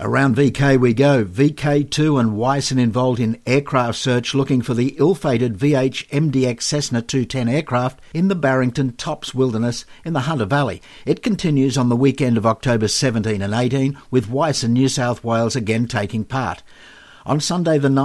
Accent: Australian